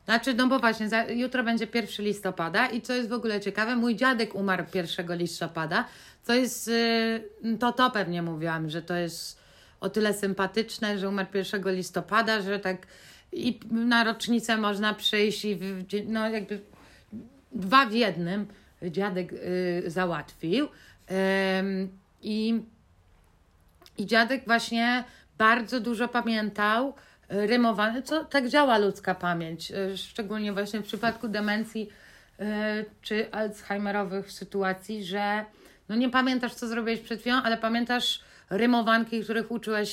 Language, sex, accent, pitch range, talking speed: Polish, female, native, 195-230 Hz, 135 wpm